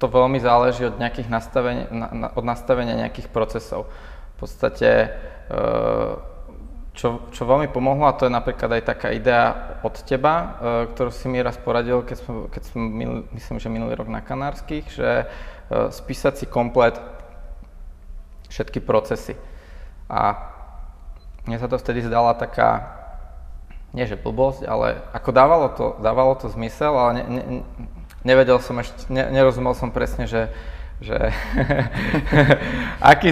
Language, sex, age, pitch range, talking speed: Czech, male, 20-39, 110-130 Hz, 140 wpm